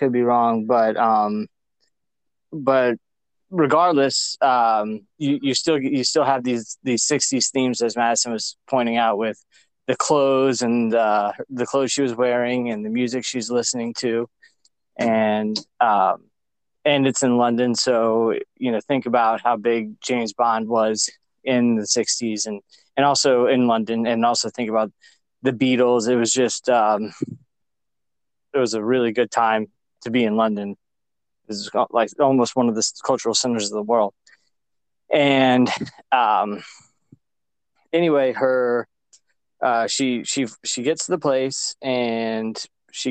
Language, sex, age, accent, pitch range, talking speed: English, male, 20-39, American, 115-130 Hz, 150 wpm